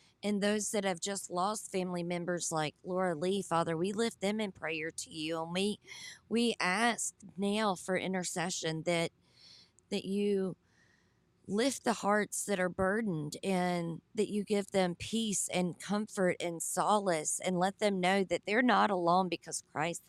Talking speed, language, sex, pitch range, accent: 165 wpm, English, female, 175-205 Hz, American